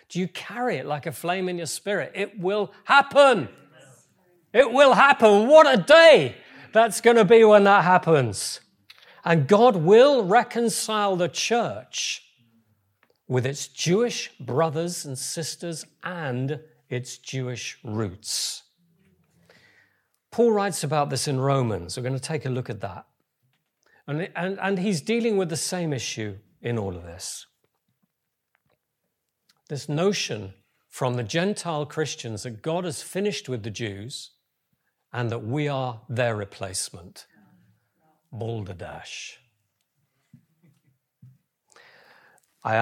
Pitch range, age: 125-215 Hz, 50-69